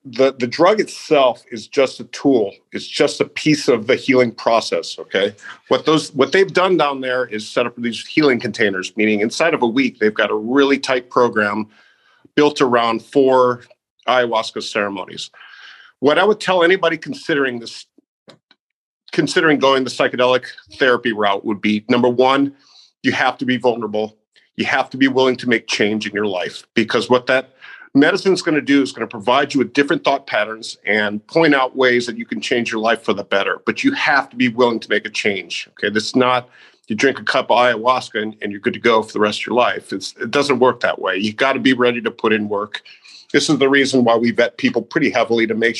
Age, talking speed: 50-69, 220 wpm